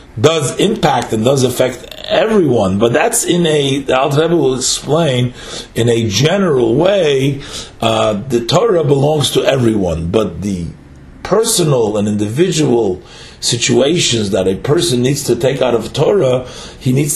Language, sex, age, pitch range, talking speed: English, male, 50-69, 120-145 Hz, 140 wpm